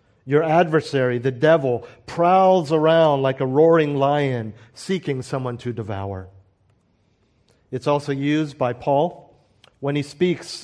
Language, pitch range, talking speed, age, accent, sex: English, 125-155 Hz, 125 wpm, 50-69, American, male